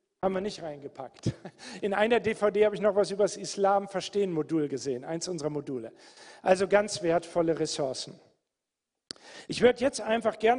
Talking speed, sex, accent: 155 wpm, male, German